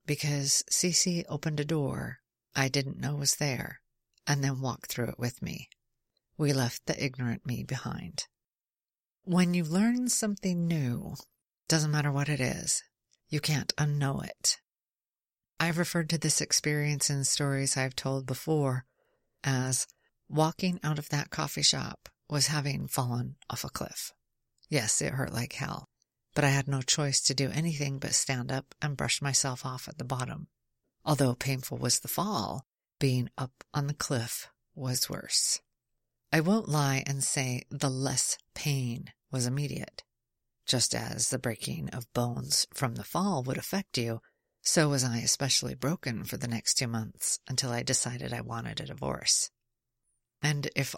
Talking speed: 160 wpm